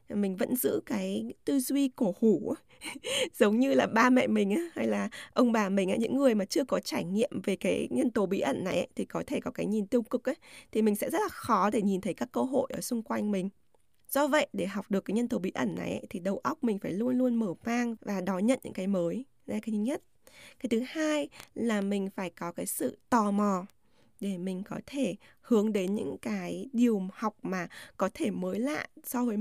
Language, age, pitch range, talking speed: Vietnamese, 10-29, 195-255 Hz, 245 wpm